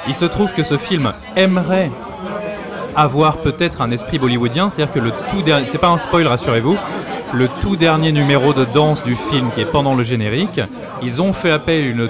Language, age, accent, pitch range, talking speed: French, 20-39, French, 130-170 Hz, 205 wpm